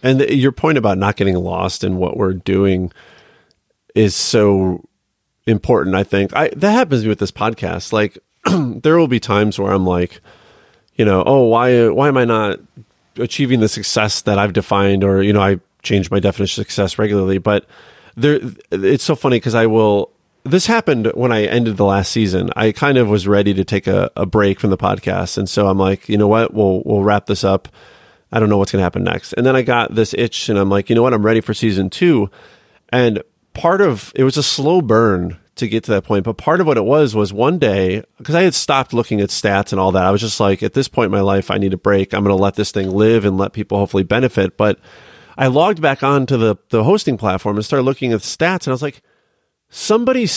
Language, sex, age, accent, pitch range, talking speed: English, male, 30-49, American, 100-125 Hz, 235 wpm